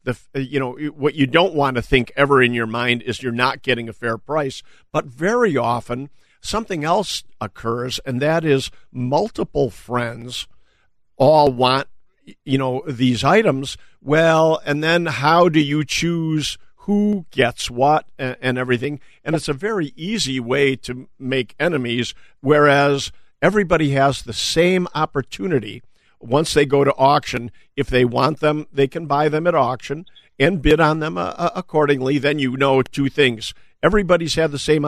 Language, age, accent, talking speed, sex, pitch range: English, 50-69, American, 165 wpm, male, 125-155 Hz